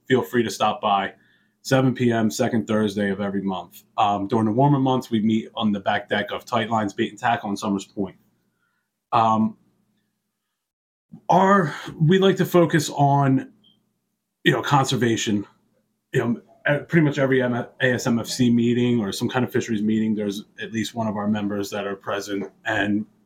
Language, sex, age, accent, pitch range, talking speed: English, male, 30-49, American, 110-150 Hz, 175 wpm